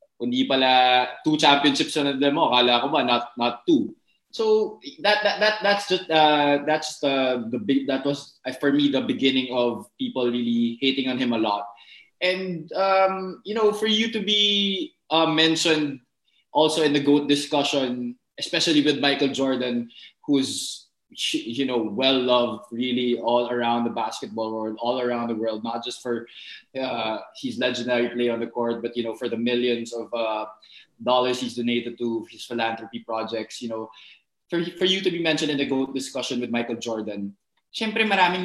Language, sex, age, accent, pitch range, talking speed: English, male, 20-39, Filipino, 120-155 Hz, 175 wpm